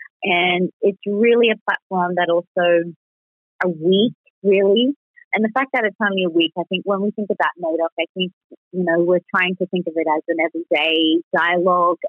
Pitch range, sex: 170-200 Hz, female